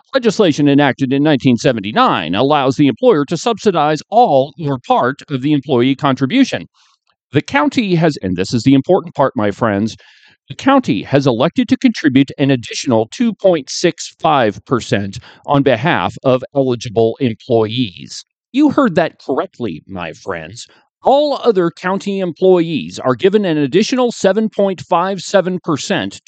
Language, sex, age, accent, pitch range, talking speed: English, male, 40-59, American, 130-200 Hz, 130 wpm